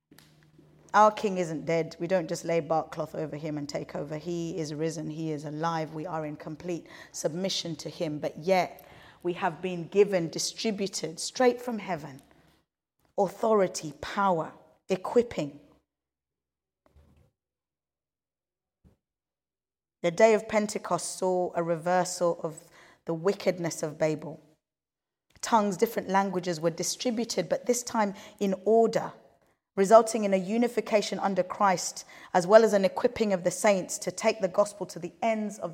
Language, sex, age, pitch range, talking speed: English, female, 30-49, 165-215 Hz, 145 wpm